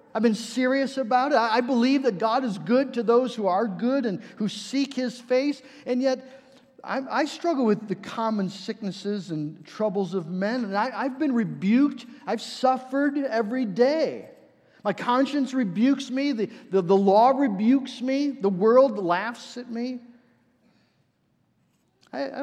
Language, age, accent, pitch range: English, 50-69, American, 185-250 Hz